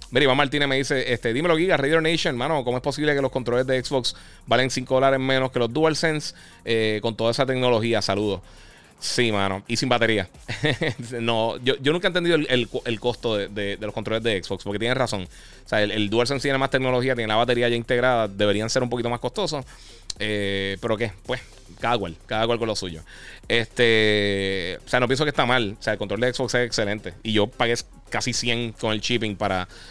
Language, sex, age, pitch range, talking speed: Spanish, male, 30-49, 105-130 Hz, 225 wpm